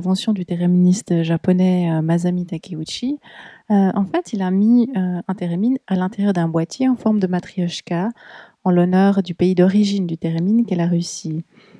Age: 30-49